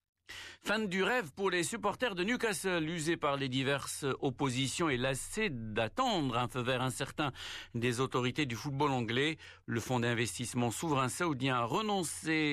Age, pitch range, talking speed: 60-79, 115-150 Hz, 155 wpm